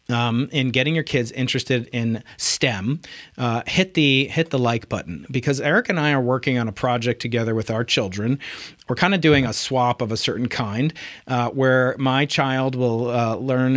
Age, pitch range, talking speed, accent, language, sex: 40-59, 120-140 Hz, 195 wpm, American, English, male